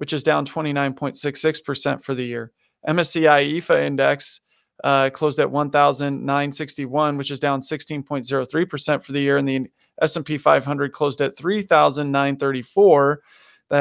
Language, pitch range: English, 135-160 Hz